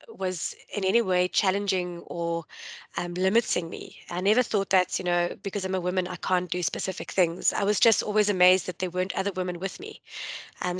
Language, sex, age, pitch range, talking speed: English, female, 20-39, 180-205 Hz, 205 wpm